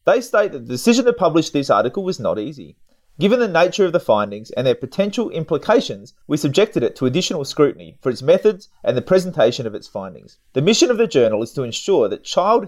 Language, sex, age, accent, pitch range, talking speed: English, male, 30-49, Australian, 135-200 Hz, 220 wpm